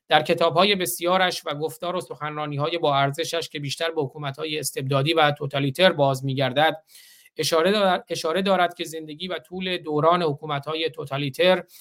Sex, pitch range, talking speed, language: male, 150-180 Hz, 150 wpm, Persian